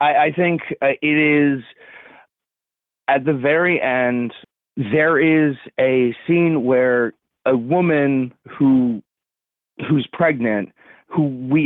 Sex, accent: male, American